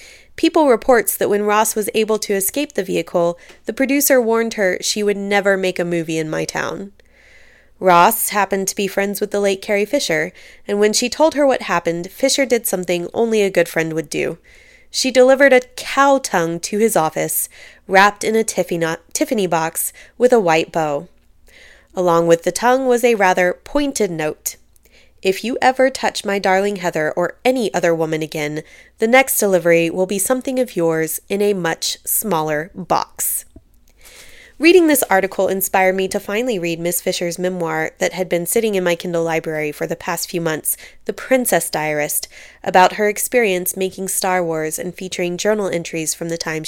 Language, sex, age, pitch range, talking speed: English, female, 20-39, 170-225 Hz, 180 wpm